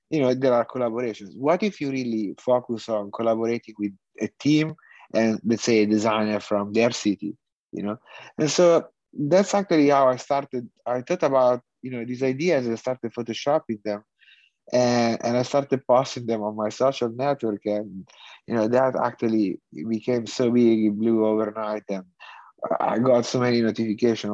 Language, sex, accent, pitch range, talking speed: English, male, Italian, 110-130 Hz, 175 wpm